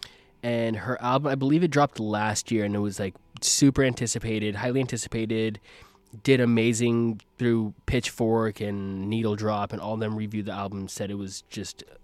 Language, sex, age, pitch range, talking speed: English, male, 20-39, 100-120 Hz, 170 wpm